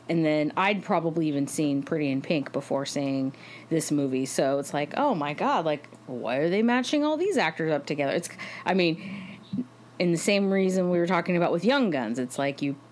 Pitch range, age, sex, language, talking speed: 165-245 Hz, 30-49, female, English, 215 wpm